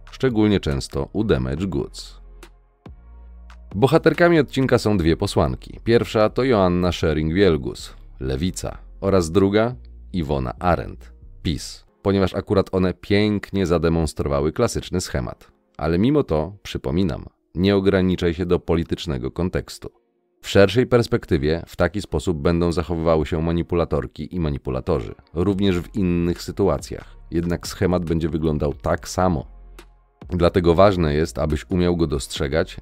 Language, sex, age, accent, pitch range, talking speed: Polish, male, 30-49, native, 75-100 Hz, 125 wpm